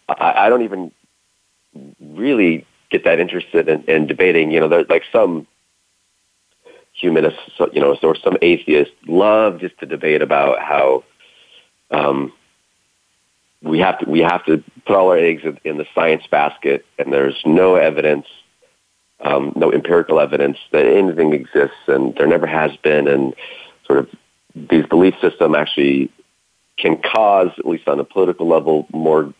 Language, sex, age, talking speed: English, male, 40-59, 150 wpm